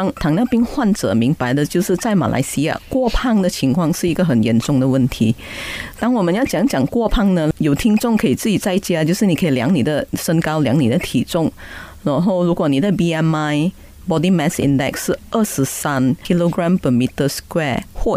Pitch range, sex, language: 150-205 Hz, female, Chinese